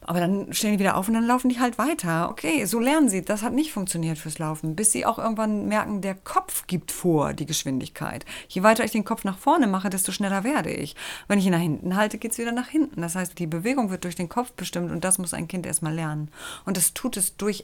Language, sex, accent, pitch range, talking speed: German, female, German, 165-205 Hz, 260 wpm